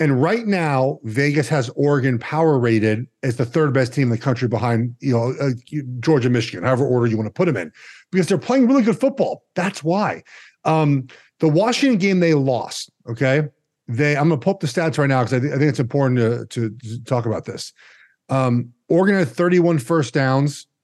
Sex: male